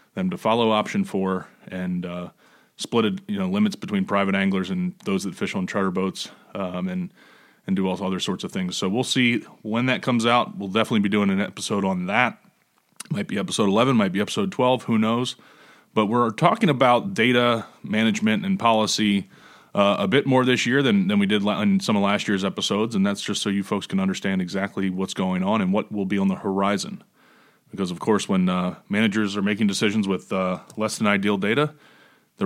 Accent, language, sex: American, English, male